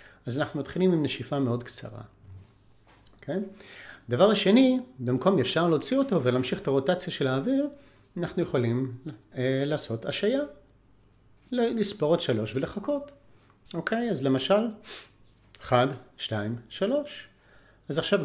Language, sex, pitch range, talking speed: Hebrew, male, 115-195 Hz, 115 wpm